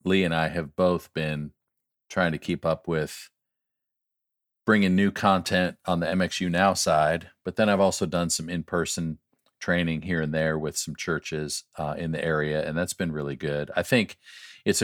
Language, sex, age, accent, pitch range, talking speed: English, male, 40-59, American, 80-95 Hz, 180 wpm